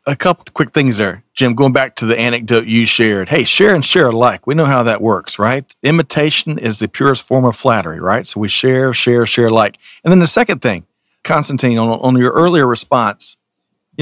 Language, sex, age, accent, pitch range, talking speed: English, male, 40-59, American, 115-140 Hz, 220 wpm